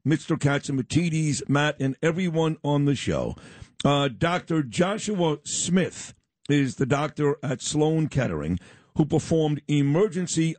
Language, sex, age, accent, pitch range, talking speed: English, male, 50-69, American, 140-160 Hz, 120 wpm